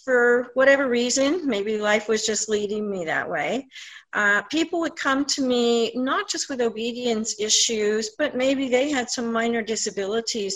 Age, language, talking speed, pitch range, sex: 50-69, English, 165 wpm, 180-245 Hz, female